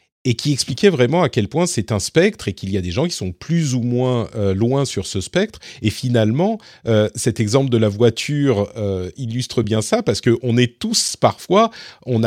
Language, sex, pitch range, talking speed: French, male, 100-130 Hz, 200 wpm